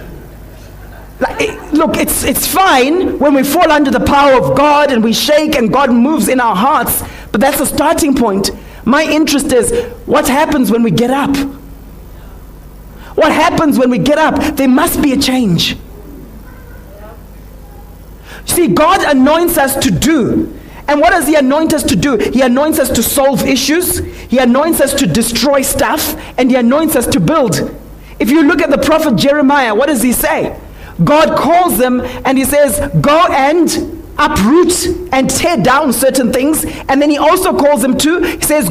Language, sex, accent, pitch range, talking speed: English, male, South African, 235-295 Hz, 175 wpm